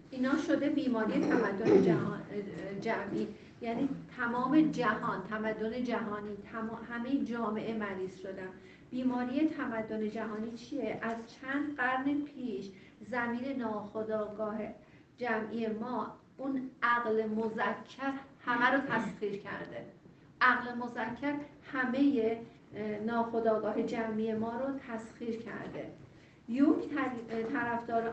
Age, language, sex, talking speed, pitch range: 50-69, Persian, female, 95 wpm, 220-265 Hz